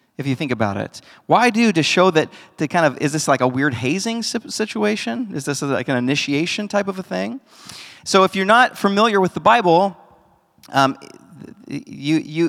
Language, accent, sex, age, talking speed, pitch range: English, American, male, 40-59, 185 wpm, 125-170 Hz